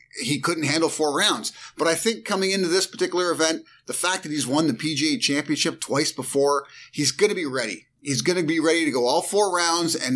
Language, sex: English, male